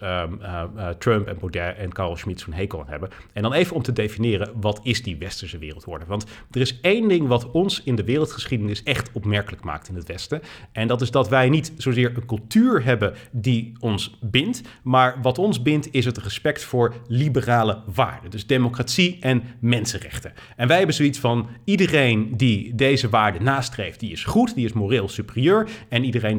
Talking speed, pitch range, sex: 195 wpm, 105-135 Hz, male